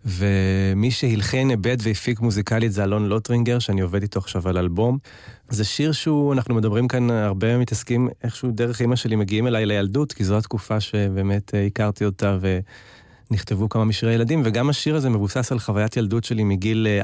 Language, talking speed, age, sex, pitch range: Hebrew, 170 wpm, 30-49, male, 100-120 Hz